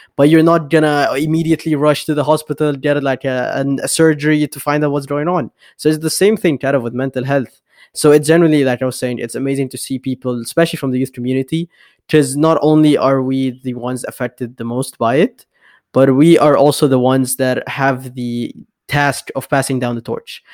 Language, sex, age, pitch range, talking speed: English, male, 20-39, 130-155 Hz, 220 wpm